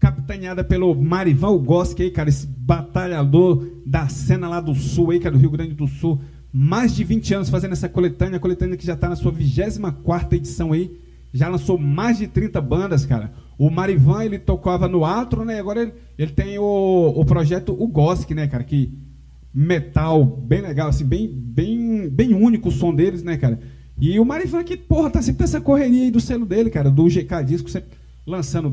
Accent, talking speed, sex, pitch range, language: Brazilian, 200 wpm, male, 140-185 Hz, Portuguese